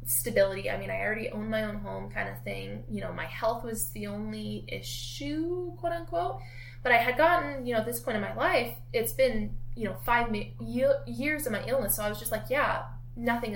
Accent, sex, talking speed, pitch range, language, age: American, female, 220 wpm, 110-135 Hz, English, 10-29